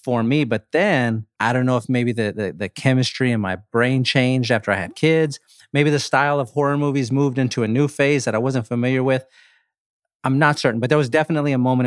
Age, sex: 30-49, male